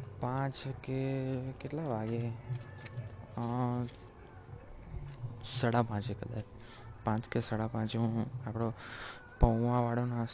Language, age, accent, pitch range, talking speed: Gujarati, 20-39, native, 115-125 Hz, 80 wpm